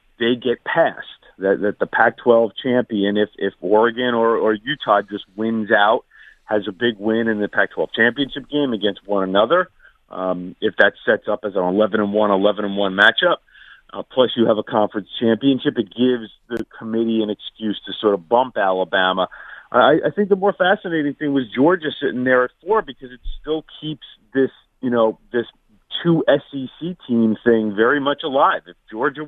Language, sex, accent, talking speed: English, male, American, 185 wpm